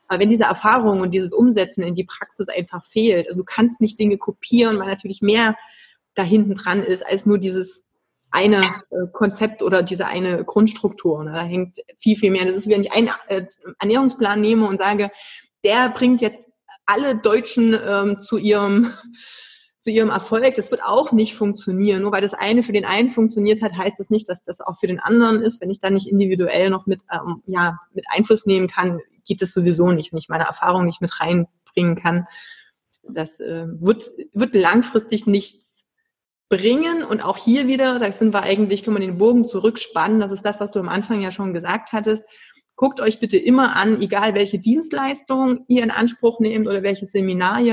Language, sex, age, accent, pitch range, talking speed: German, female, 20-39, German, 190-225 Hz, 195 wpm